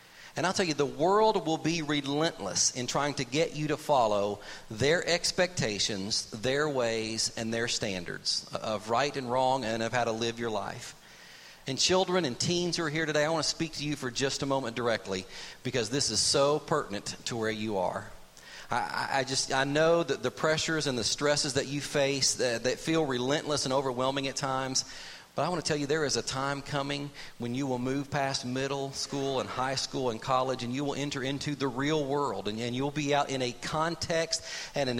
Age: 40-59